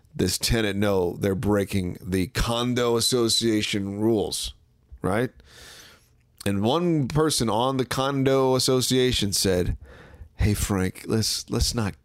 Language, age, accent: English, 40-59, American